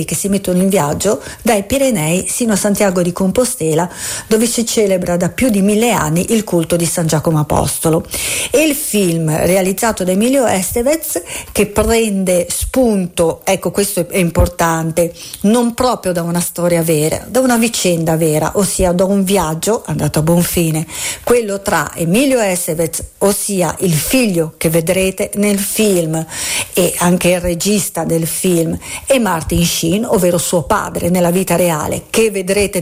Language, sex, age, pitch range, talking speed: Italian, female, 50-69, 170-220 Hz, 155 wpm